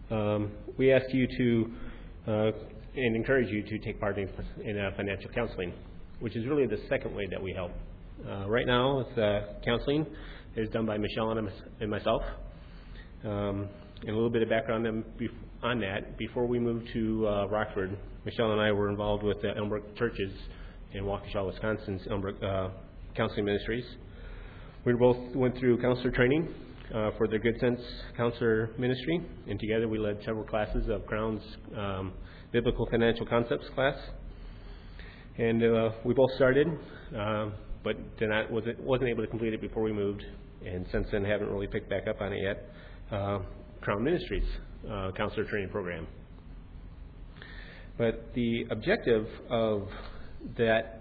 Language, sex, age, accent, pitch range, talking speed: English, male, 30-49, American, 100-115 Hz, 155 wpm